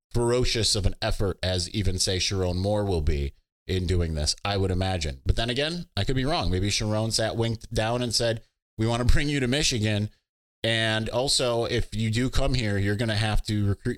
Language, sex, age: English, male, 20-39